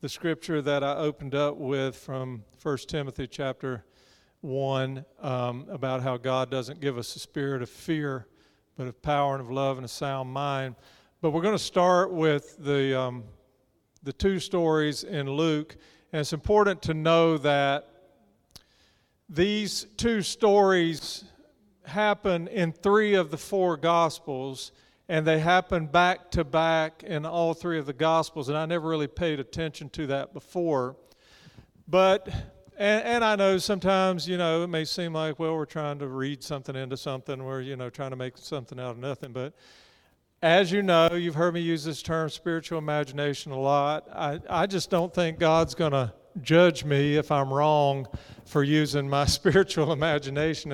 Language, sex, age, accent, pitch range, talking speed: English, male, 50-69, American, 135-170 Hz, 170 wpm